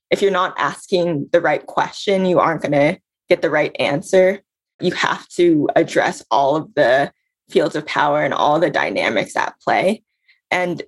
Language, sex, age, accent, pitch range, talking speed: English, female, 20-39, American, 170-235 Hz, 175 wpm